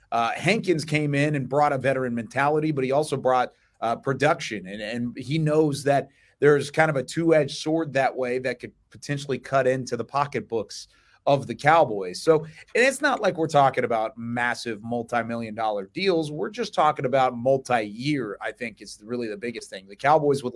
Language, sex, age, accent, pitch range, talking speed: English, male, 30-49, American, 115-145 Hz, 190 wpm